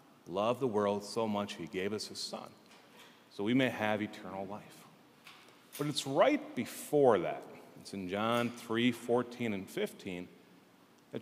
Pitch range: 105-135 Hz